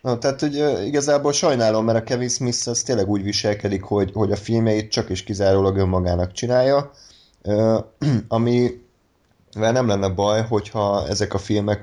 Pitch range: 95-110 Hz